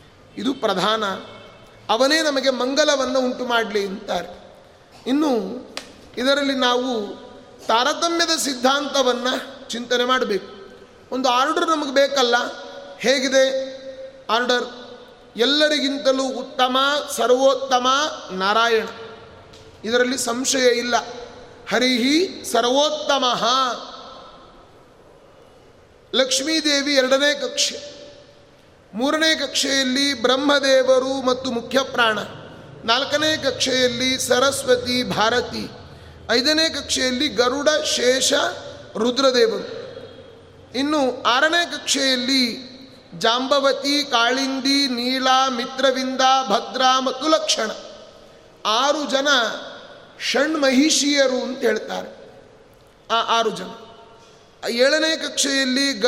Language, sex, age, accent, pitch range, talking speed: Kannada, male, 30-49, native, 245-280 Hz, 65 wpm